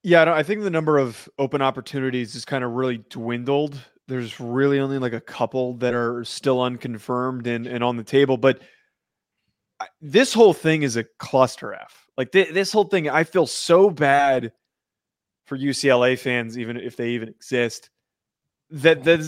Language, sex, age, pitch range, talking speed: English, male, 20-39, 130-215 Hz, 170 wpm